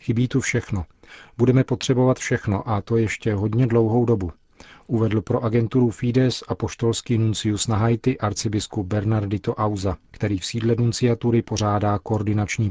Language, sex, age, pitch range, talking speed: Czech, male, 40-59, 105-120 Hz, 135 wpm